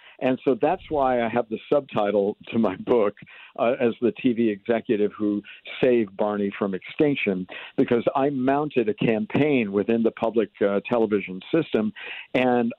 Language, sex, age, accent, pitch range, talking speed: English, male, 50-69, American, 110-135 Hz, 155 wpm